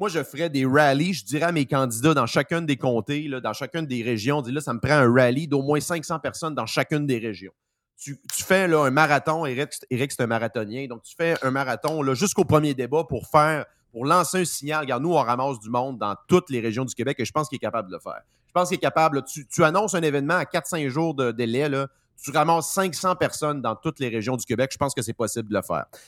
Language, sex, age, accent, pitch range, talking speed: French, male, 30-49, Canadian, 125-160 Hz, 265 wpm